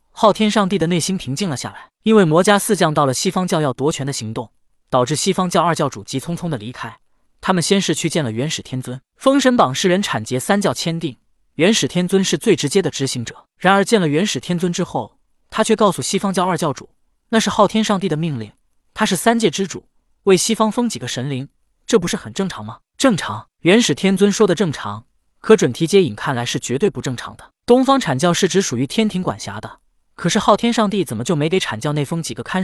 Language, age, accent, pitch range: Chinese, 20-39, native, 135-195 Hz